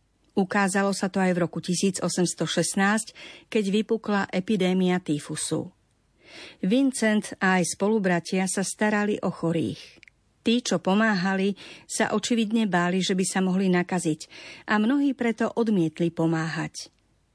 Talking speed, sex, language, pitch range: 120 wpm, female, Slovak, 180-225 Hz